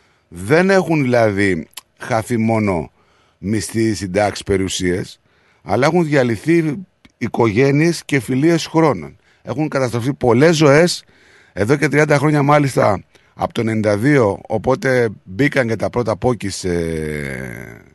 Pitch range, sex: 95-145 Hz, male